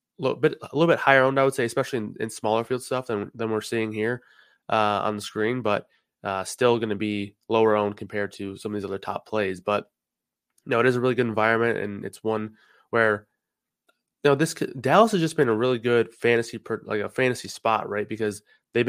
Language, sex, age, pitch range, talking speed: English, male, 20-39, 105-125 Hz, 220 wpm